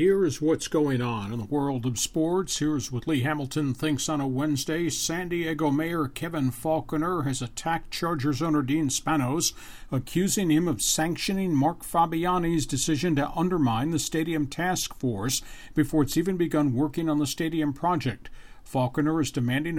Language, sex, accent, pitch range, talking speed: English, male, American, 135-160 Hz, 160 wpm